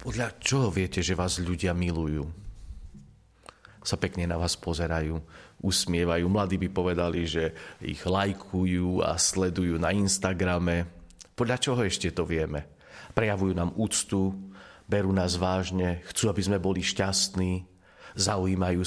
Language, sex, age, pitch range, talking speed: Slovak, male, 40-59, 90-110 Hz, 125 wpm